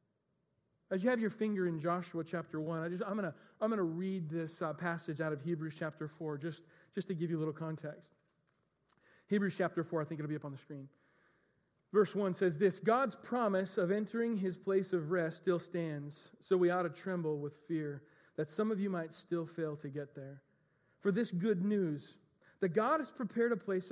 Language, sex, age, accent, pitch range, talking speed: English, male, 40-59, American, 155-195 Hz, 215 wpm